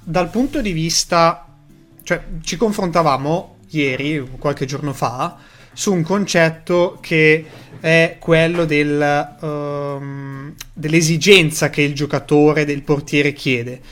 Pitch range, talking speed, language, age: 140-165 Hz, 105 wpm, Italian, 30-49